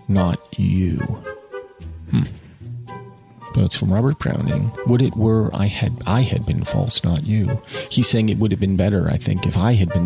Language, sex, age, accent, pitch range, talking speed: English, male, 40-59, American, 100-125 Hz, 185 wpm